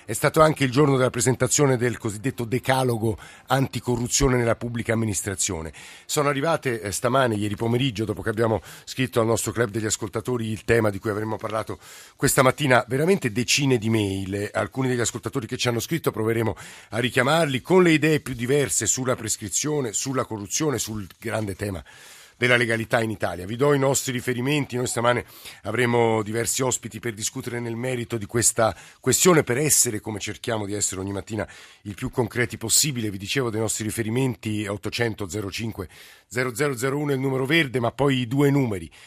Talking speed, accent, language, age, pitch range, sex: 170 wpm, native, Italian, 50-69, 105-130 Hz, male